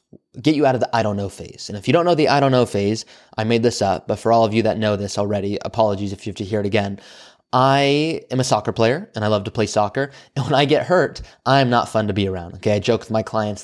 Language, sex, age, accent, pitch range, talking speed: English, male, 20-39, American, 110-130 Hz, 300 wpm